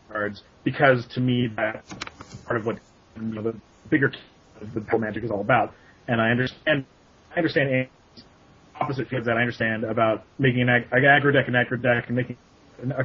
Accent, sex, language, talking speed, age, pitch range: American, male, English, 175 wpm, 30-49, 110-135 Hz